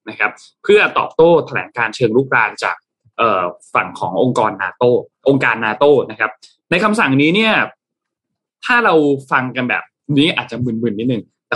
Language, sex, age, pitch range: Thai, male, 20-39, 115-150 Hz